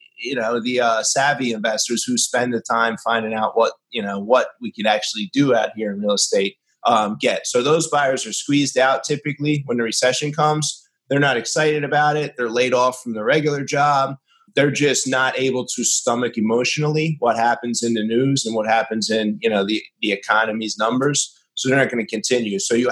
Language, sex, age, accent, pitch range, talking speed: English, male, 30-49, American, 115-140 Hz, 210 wpm